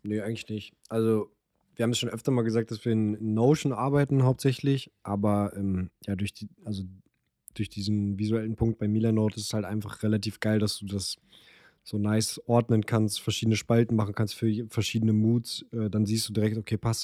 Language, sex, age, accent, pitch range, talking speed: German, male, 20-39, German, 105-115 Hz, 200 wpm